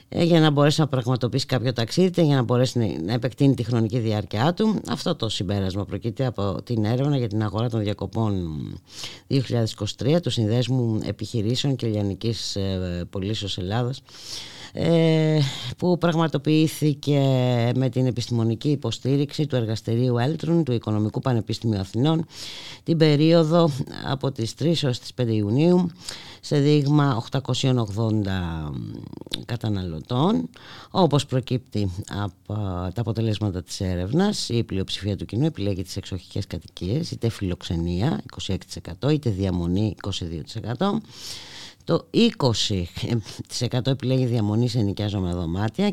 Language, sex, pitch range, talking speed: Greek, female, 100-135 Hz, 120 wpm